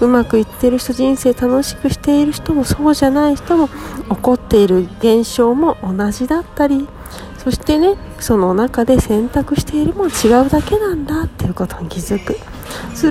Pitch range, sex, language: 210-290 Hz, female, Japanese